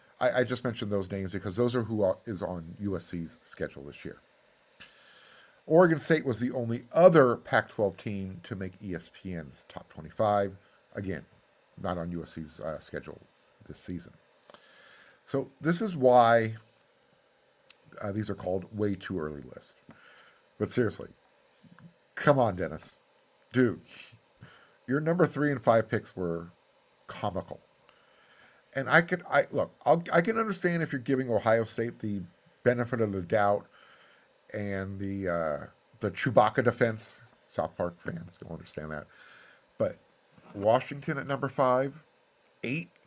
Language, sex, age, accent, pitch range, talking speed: English, male, 50-69, American, 100-145 Hz, 140 wpm